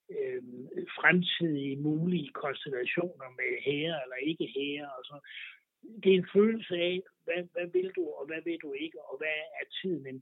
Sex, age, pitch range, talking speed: male, 60-79, 145-180 Hz, 175 wpm